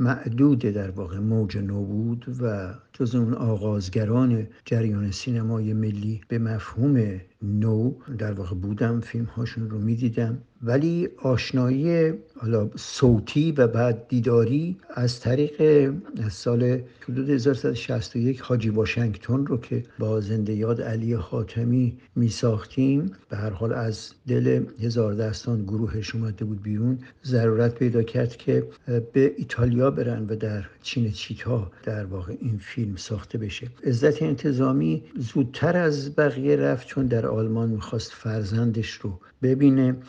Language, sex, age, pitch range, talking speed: Persian, male, 60-79, 110-130 Hz, 135 wpm